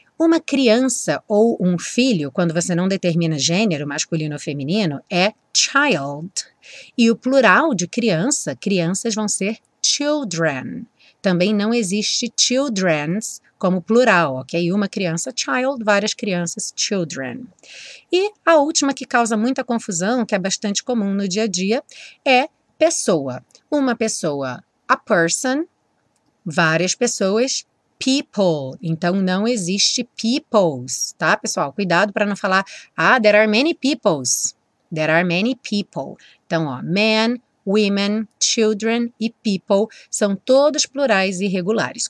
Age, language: 30-49, Portuguese